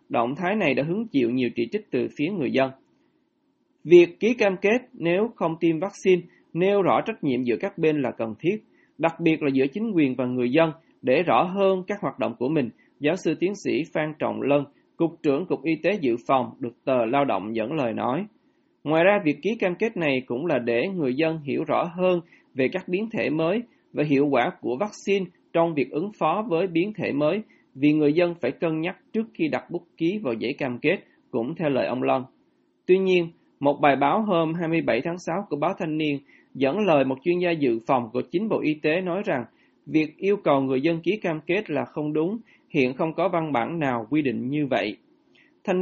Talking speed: 225 wpm